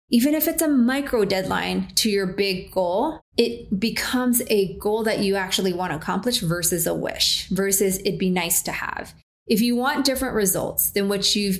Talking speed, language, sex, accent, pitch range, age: 190 wpm, English, female, American, 185-230 Hz, 30-49